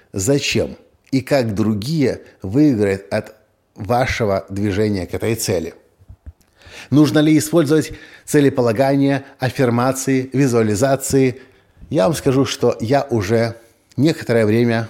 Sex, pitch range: male, 105-140 Hz